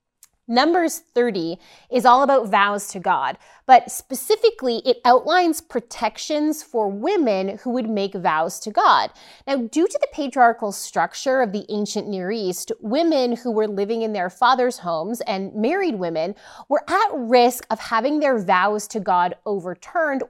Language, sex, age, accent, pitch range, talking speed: English, female, 30-49, American, 200-270 Hz, 155 wpm